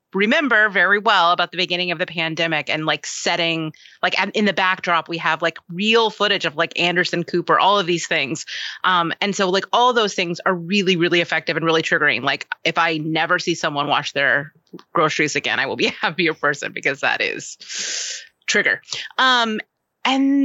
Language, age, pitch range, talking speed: English, 30-49, 160-200 Hz, 190 wpm